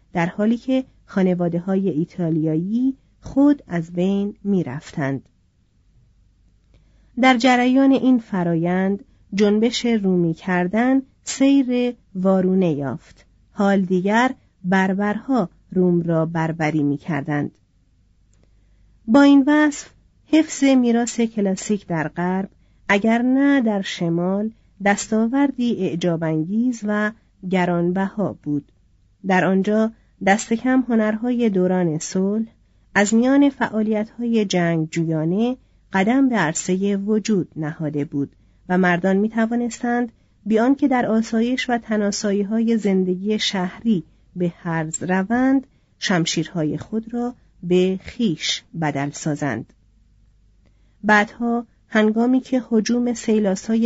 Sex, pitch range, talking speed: female, 165-230 Hz, 100 wpm